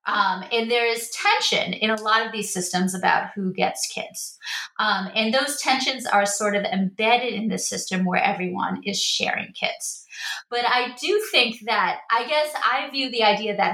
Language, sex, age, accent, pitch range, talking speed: English, female, 30-49, American, 200-235 Hz, 190 wpm